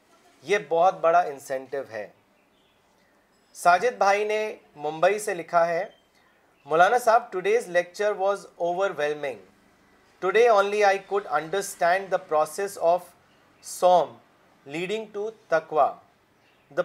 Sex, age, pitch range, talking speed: male, 40-59, 155-200 Hz, 110 wpm